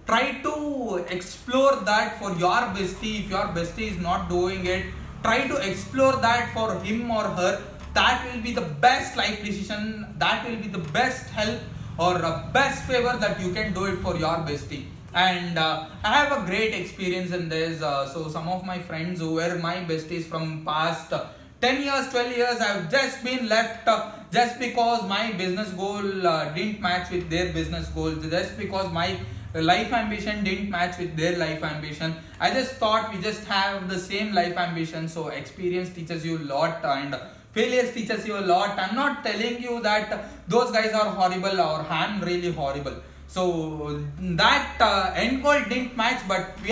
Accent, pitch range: Indian, 165-220 Hz